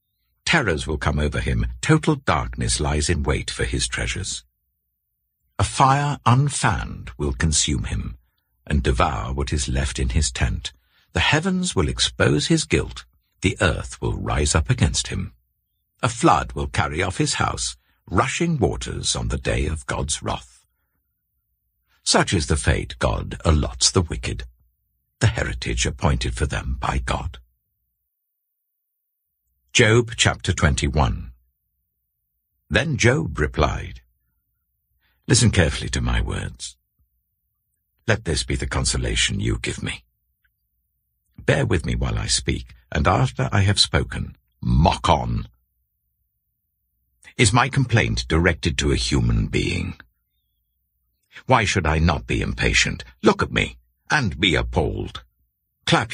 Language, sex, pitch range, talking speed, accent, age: English, male, 65-100 Hz, 130 wpm, British, 60-79